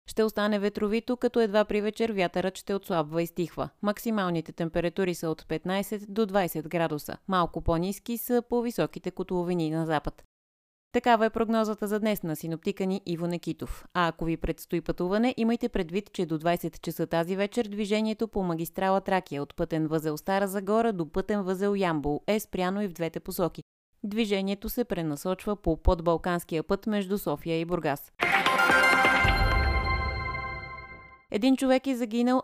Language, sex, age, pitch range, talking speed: Bulgarian, female, 30-49, 165-210 Hz, 155 wpm